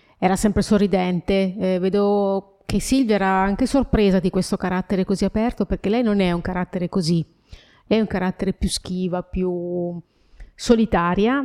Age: 30-49